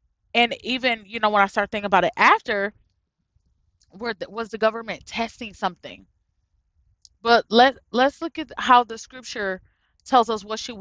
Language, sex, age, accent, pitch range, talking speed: English, female, 20-39, American, 175-255 Hz, 165 wpm